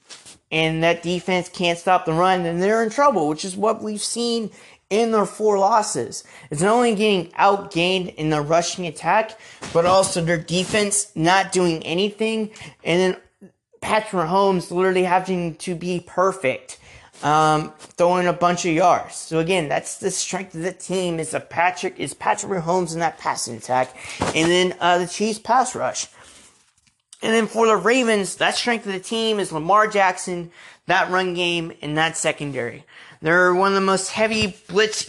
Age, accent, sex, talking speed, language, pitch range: 30-49, American, male, 175 wpm, English, 175-205 Hz